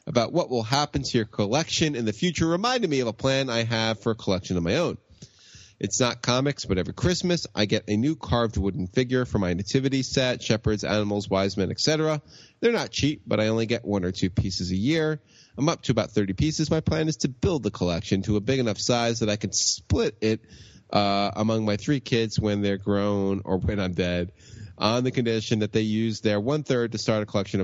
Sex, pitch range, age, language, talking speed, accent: male, 100-125 Hz, 30-49, English, 230 wpm, American